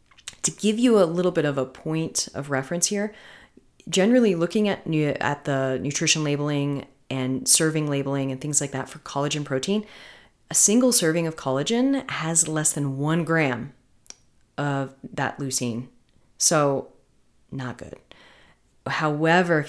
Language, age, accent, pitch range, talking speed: English, 30-49, American, 135-165 Hz, 145 wpm